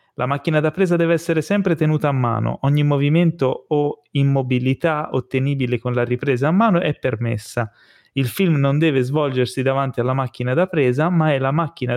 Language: Italian